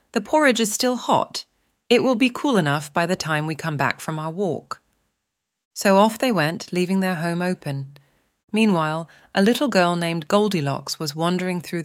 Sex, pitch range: female, 150-220 Hz